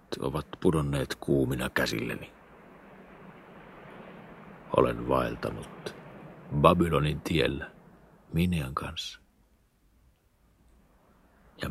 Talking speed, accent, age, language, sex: 55 wpm, native, 60-79, Finnish, male